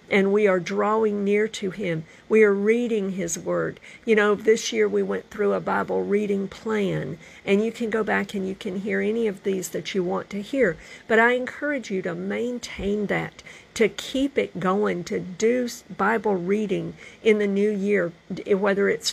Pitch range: 185-225 Hz